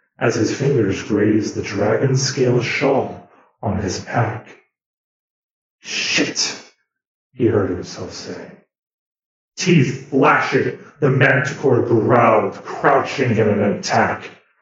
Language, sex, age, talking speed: English, male, 40-59, 105 wpm